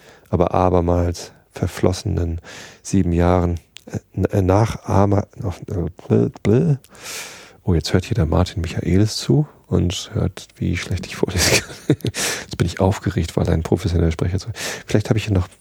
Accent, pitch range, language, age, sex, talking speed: German, 90-105 Hz, German, 40-59, male, 160 wpm